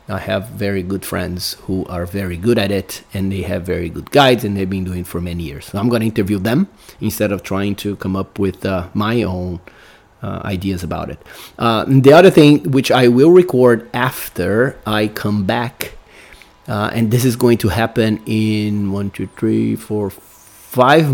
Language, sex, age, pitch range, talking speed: English, male, 30-49, 100-120 Hz, 195 wpm